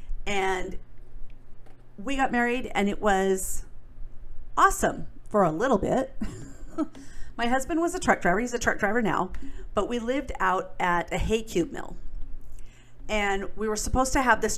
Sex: female